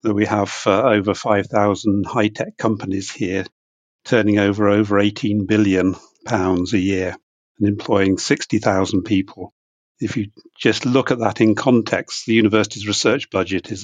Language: English